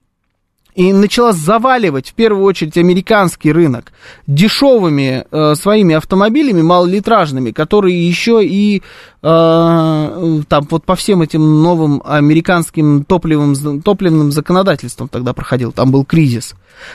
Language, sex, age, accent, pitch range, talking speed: Russian, male, 20-39, native, 150-210 Hz, 115 wpm